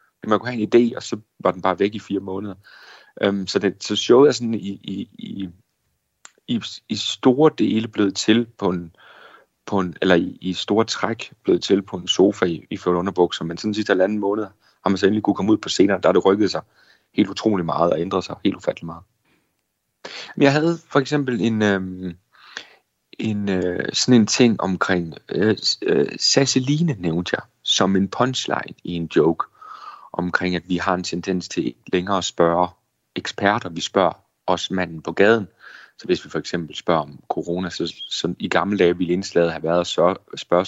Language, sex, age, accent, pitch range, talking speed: Danish, male, 40-59, native, 90-110 Hz, 195 wpm